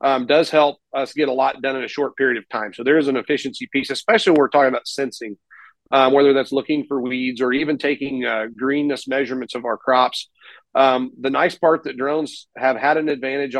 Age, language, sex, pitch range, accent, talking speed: 40-59, English, male, 130-145 Hz, American, 225 wpm